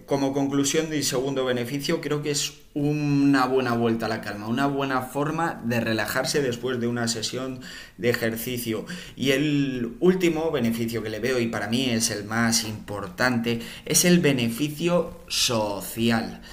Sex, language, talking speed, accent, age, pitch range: male, Spanish, 155 wpm, Spanish, 20-39, 115-145 Hz